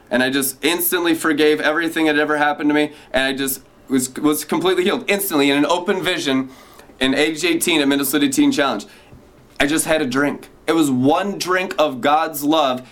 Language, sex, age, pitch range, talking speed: English, male, 20-39, 145-185 Hz, 195 wpm